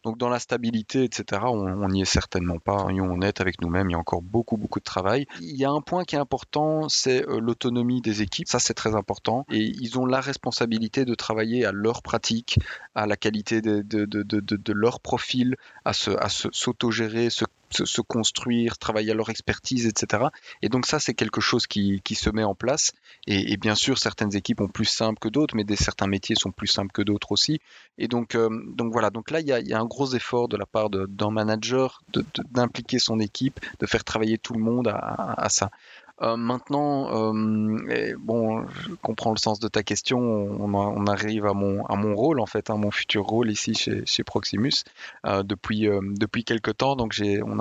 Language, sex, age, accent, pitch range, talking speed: French, male, 30-49, French, 105-120 Hz, 225 wpm